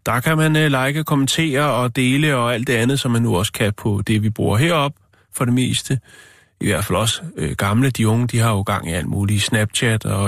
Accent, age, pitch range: native, 30-49, 105-135 Hz